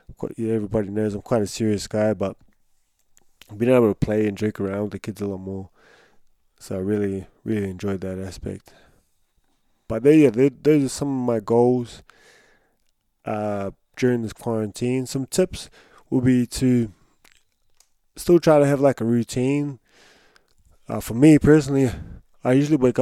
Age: 20-39